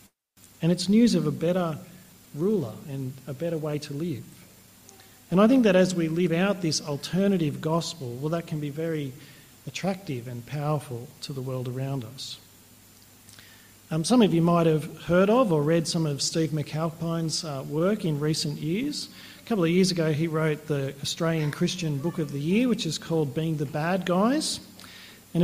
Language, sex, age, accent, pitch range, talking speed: English, male, 40-59, Australian, 140-175 Hz, 185 wpm